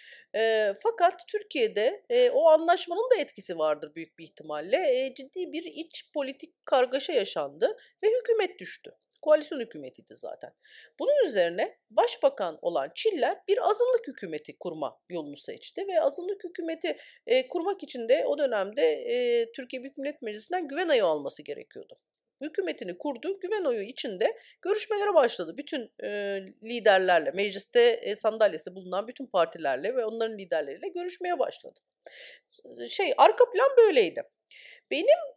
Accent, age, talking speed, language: native, 40-59, 135 wpm, Turkish